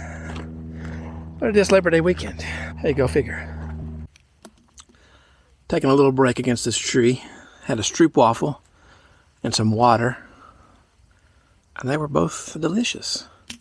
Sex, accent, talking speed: male, American, 125 wpm